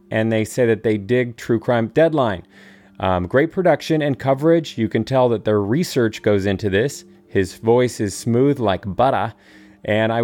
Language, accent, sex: English, American, male